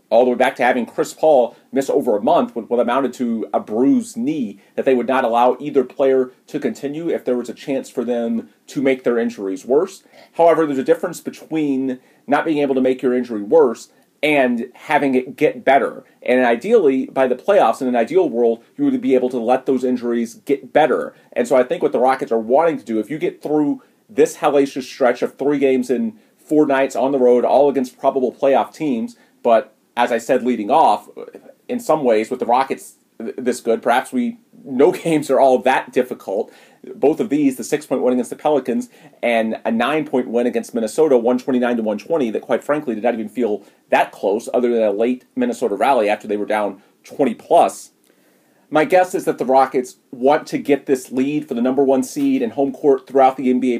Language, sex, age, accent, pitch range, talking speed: English, male, 30-49, American, 120-150 Hz, 220 wpm